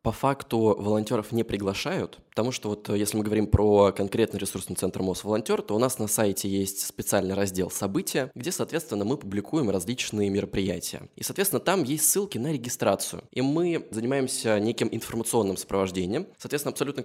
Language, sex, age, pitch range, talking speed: Russian, male, 20-39, 100-125 Hz, 165 wpm